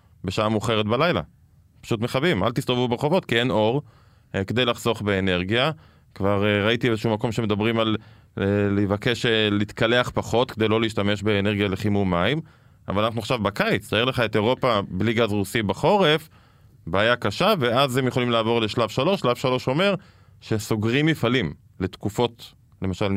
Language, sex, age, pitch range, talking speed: Hebrew, male, 20-39, 105-125 Hz, 155 wpm